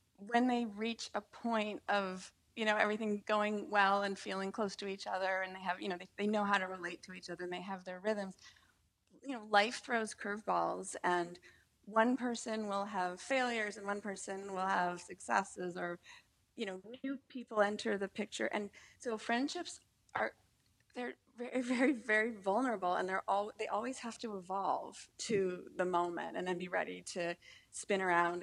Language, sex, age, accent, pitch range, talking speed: English, female, 30-49, American, 185-225 Hz, 185 wpm